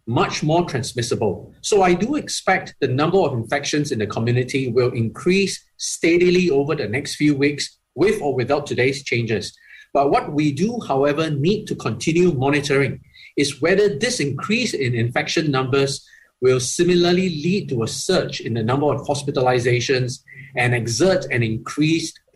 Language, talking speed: English, 155 wpm